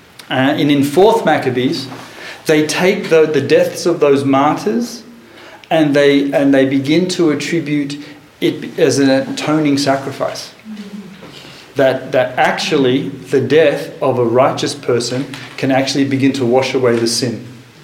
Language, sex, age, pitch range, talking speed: English, male, 40-59, 125-145 Hz, 140 wpm